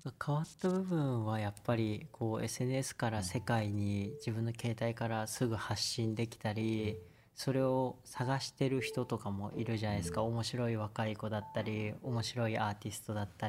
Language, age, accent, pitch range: Japanese, 20-39, native, 110-135 Hz